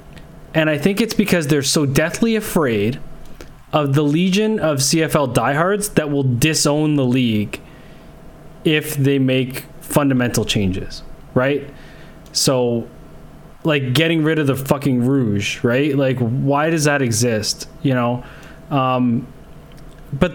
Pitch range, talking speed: 135-170 Hz, 130 wpm